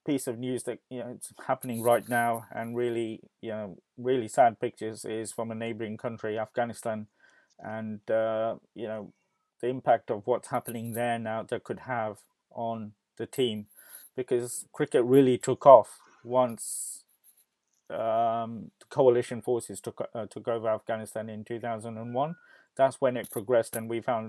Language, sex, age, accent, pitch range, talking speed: English, male, 20-39, British, 110-125 Hz, 160 wpm